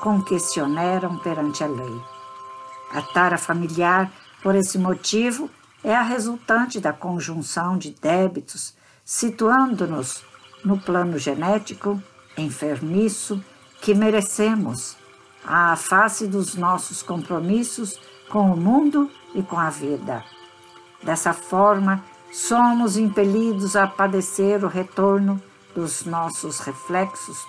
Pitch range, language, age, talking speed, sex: 170-210 Hz, Portuguese, 60-79, 105 wpm, female